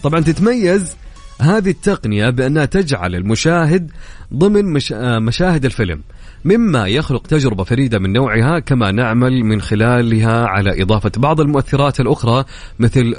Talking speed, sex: 125 wpm, male